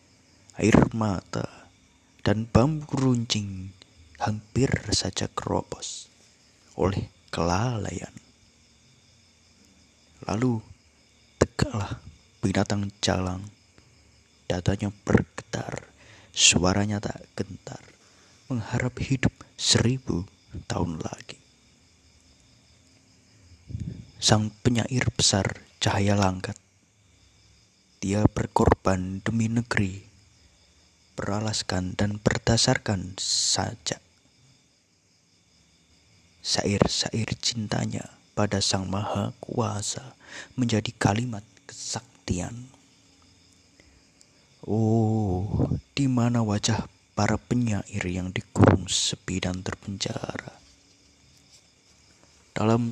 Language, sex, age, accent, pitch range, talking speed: Indonesian, male, 30-49, native, 95-115 Hz, 65 wpm